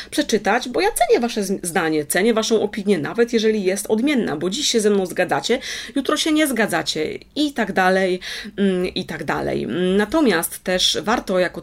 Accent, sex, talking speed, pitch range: native, female, 170 wpm, 180-225 Hz